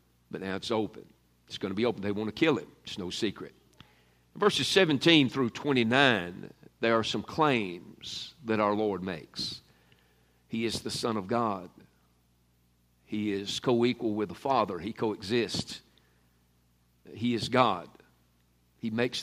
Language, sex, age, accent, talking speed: English, male, 50-69, American, 150 wpm